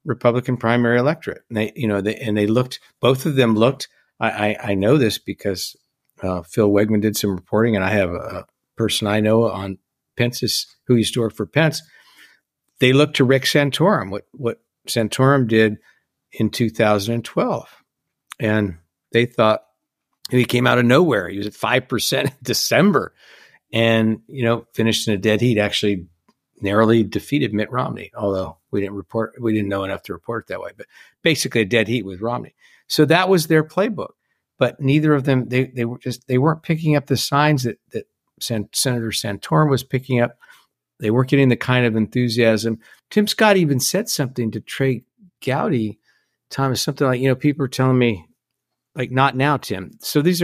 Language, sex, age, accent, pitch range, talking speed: English, male, 50-69, American, 110-135 Hz, 185 wpm